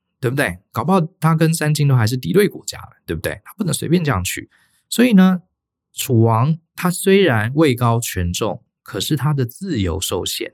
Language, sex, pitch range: Chinese, male, 95-150 Hz